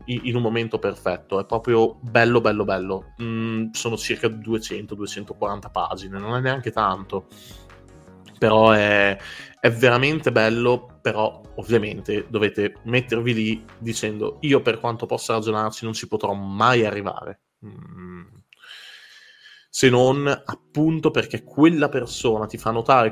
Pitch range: 105-130 Hz